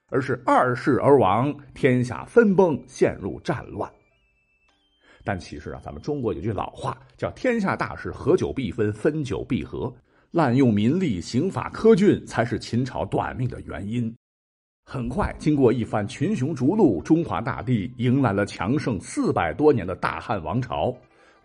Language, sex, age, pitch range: Chinese, male, 50-69, 110-160 Hz